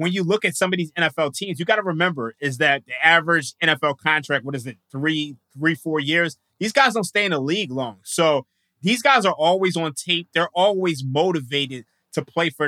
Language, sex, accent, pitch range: English, male, American, 130-160 Hz